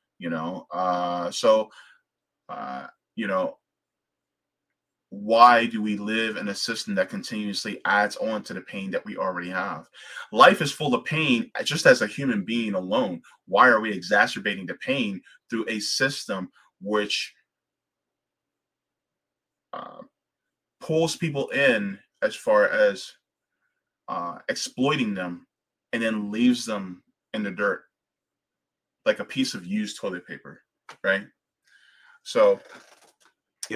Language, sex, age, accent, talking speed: English, male, 20-39, American, 130 wpm